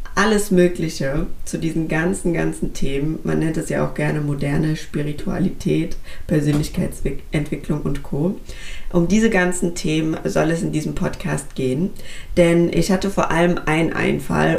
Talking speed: 145 wpm